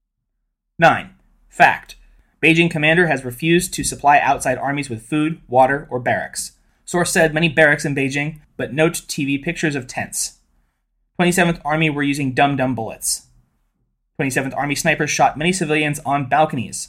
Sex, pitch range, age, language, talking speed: male, 135-160 Hz, 30-49, English, 145 wpm